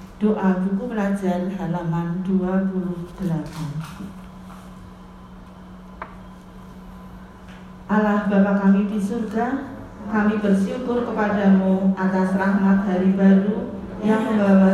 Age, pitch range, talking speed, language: 40-59, 175-195 Hz, 75 wpm, Indonesian